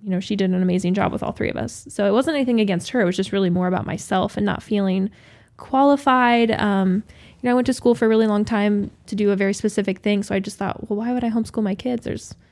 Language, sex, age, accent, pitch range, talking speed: English, female, 10-29, American, 190-225 Hz, 285 wpm